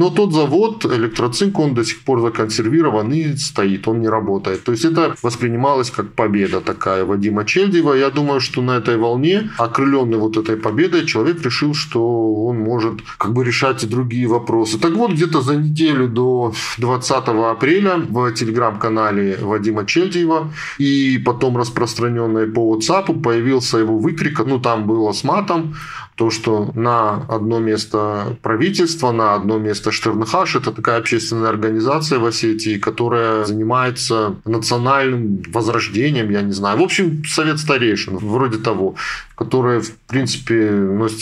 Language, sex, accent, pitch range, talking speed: Russian, male, native, 110-145 Hz, 150 wpm